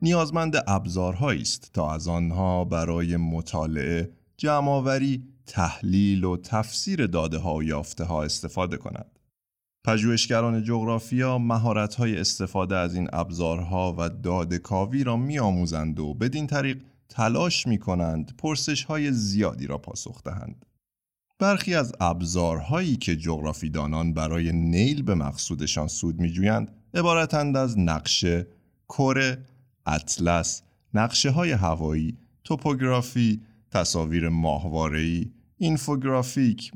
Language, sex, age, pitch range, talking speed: Persian, male, 30-49, 85-125 Hz, 100 wpm